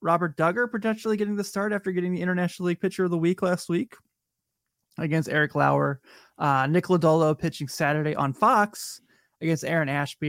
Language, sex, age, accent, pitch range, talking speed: English, male, 20-39, American, 135-170 Hz, 175 wpm